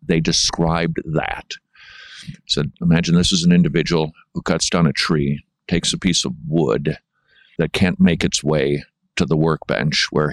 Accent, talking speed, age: American, 165 wpm, 50-69